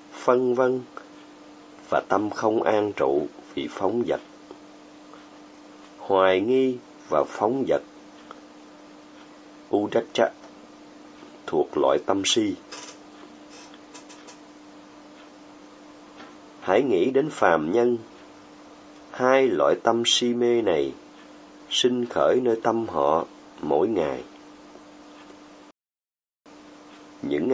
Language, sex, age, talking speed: Vietnamese, male, 30-49, 85 wpm